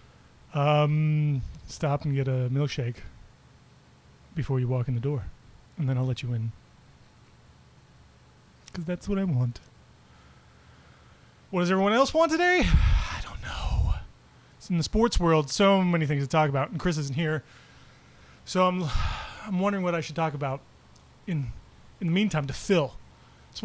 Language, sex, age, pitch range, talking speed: English, male, 30-49, 135-195 Hz, 160 wpm